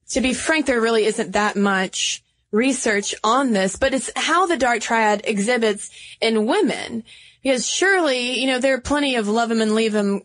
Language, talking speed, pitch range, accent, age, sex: English, 195 wpm, 205-250 Hz, American, 20-39, female